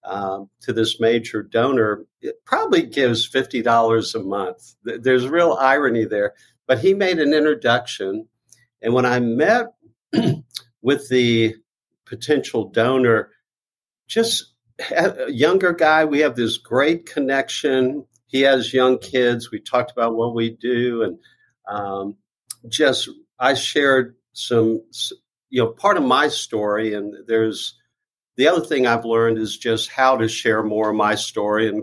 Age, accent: 60-79, American